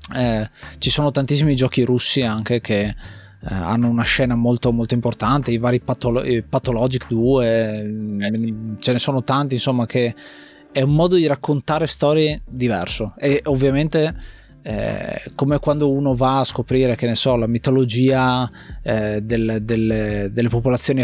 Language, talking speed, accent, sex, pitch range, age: Italian, 150 wpm, native, male, 110-130 Hz, 20-39